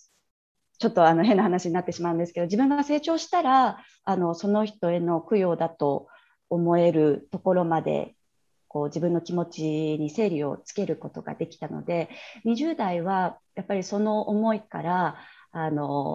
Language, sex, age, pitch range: Japanese, female, 30-49, 160-235 Hz